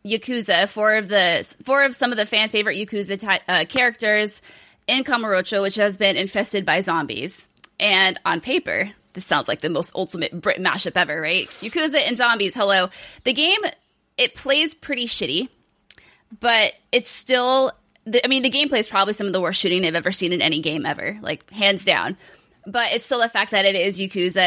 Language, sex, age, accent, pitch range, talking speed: English, female, 20-39, American, 190-245 Hz, 190 wpm